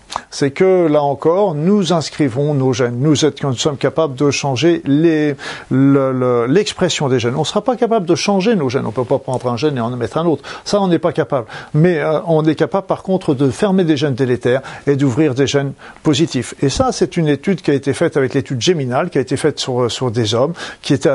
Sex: male